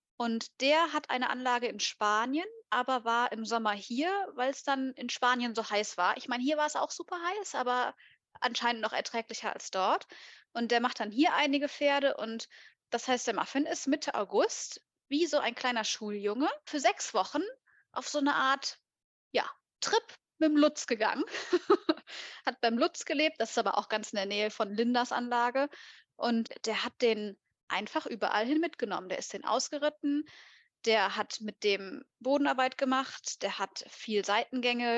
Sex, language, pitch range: female, English, 230-295 Hz